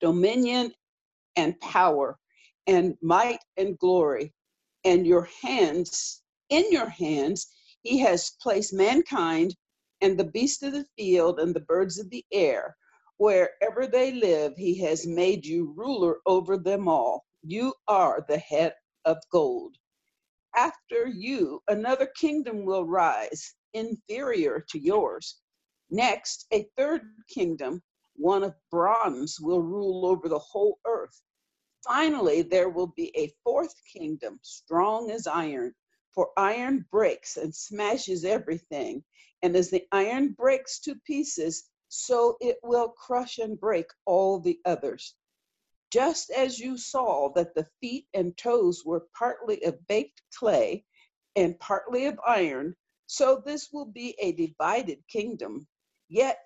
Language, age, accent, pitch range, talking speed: English, 50-69, American, 180-275 Hz, 135 wpm